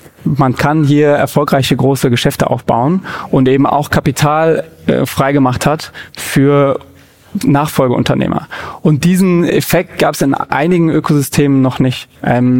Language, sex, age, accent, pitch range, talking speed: German, male, 30-49, German, 135-150 Hz, 130 wpm